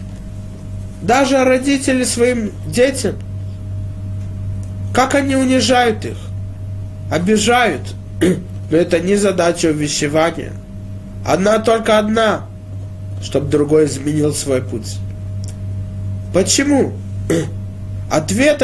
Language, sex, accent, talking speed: Russian, male, native, 75 wpm